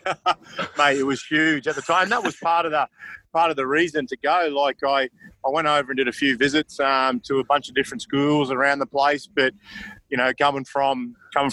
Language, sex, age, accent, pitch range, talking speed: English, male, 30-49, Australian, 130-145 Hz, 230 wpm